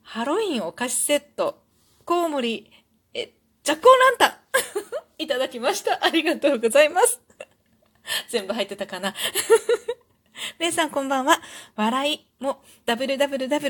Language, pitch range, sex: Japanese, 205-320 Hz, female